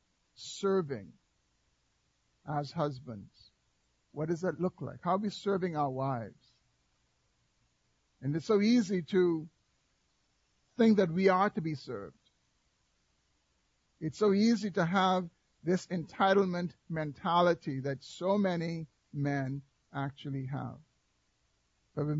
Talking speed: 115 wpm